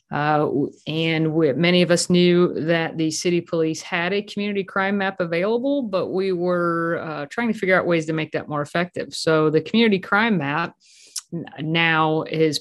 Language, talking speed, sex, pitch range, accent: English, 175 wpm, female, 160-190 Hz, American